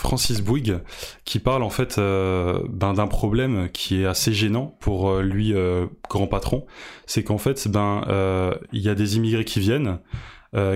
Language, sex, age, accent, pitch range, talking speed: French, male, 20-39, French, 100-120 Hz, 180 wpm